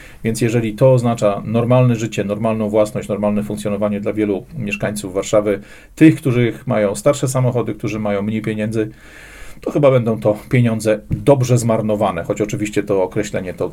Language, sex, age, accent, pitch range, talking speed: Polish, male, 40-59, native, 110-135 Hz, 155 wpm